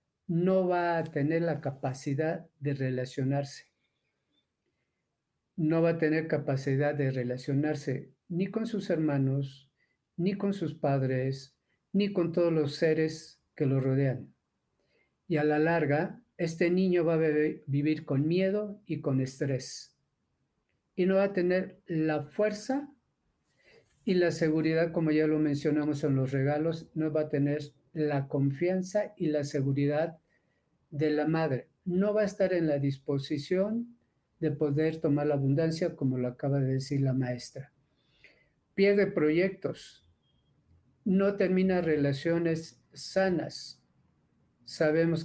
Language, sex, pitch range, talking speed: Spanish, male, 140-175 Hz, 135 wpm